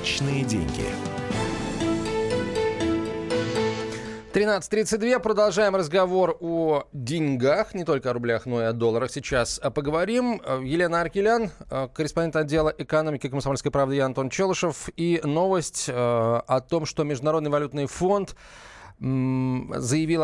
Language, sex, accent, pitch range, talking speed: Russian, male, native, 125-170 Hz, 100 wpm